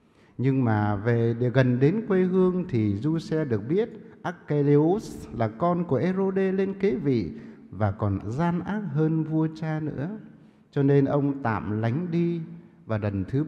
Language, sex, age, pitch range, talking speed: English, male, 60-79, 110-175 Hz, 160 wpm